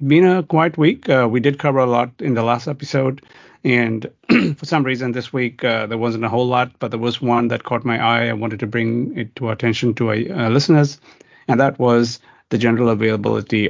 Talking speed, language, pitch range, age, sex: 225 wpm, English, 110-125 Hz, 30-49, male